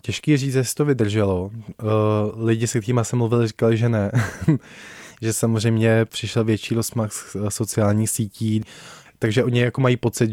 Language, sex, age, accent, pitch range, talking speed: Czech, male, 20-39, native, 105-115 Hz, 155 wpm